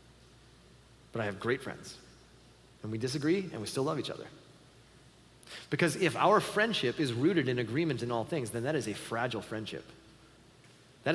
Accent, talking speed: American, 170 wpm